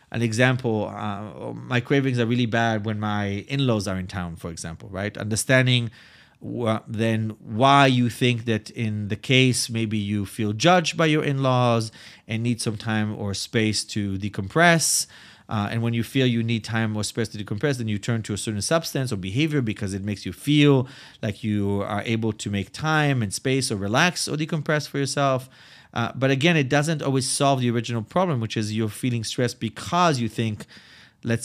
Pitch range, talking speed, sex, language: 105-130 Hz, 195 wpm, male, English